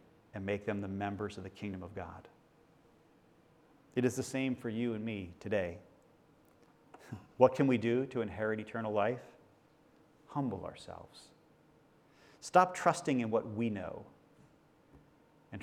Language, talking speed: English, 140 wpm